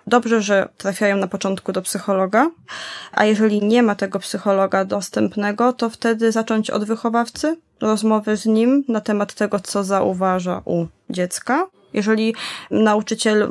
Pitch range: 200-230 Hz